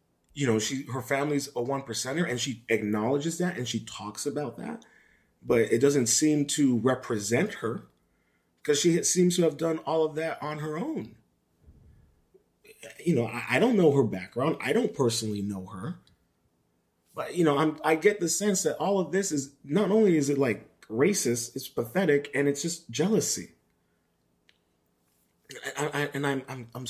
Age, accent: 30-49, American